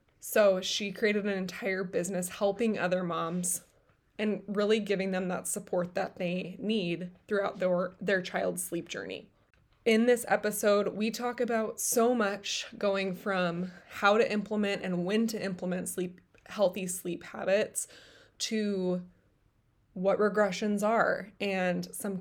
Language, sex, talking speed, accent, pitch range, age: English, female, 140 wpm, American, 180-210 Hz, 20-39